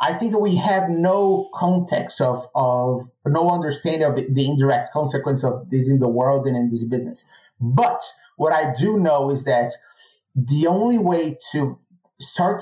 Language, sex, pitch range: English, male, 140-180 Hz